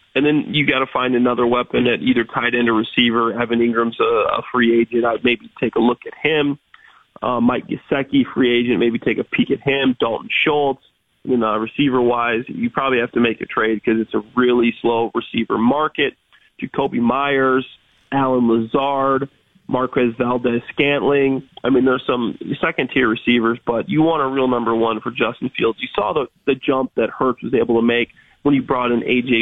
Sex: male